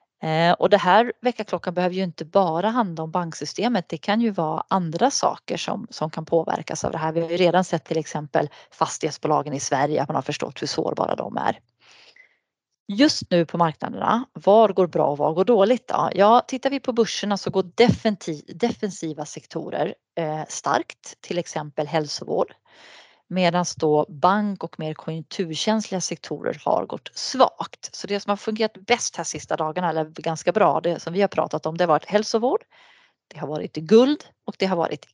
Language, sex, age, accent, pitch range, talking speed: Swedish, female, 30-49, native, 160-215 Hz, 185 wpm